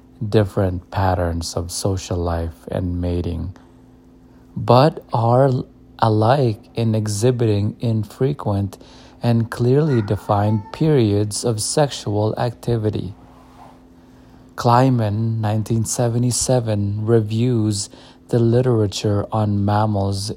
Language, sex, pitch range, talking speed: English, male, 95-120 Hz, 80 wpm